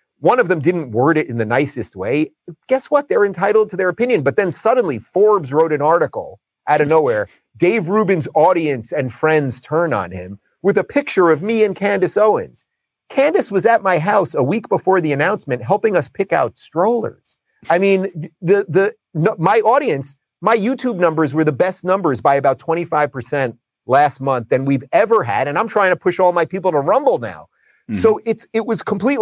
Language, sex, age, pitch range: English, male, 30-49, 140-210 Hz